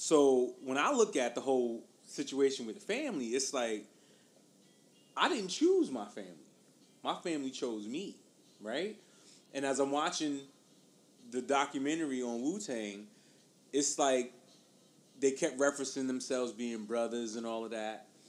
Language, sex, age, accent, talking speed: English, male, 30-49, American, 140 wpm